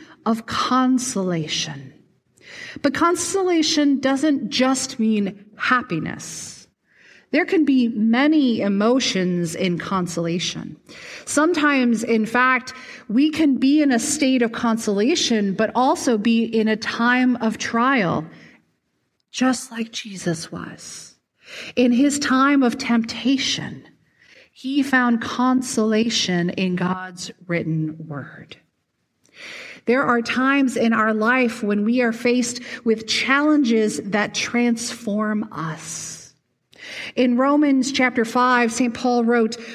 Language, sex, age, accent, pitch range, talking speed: English, female, 40-59, American, 215-265 Hz, 110 wpm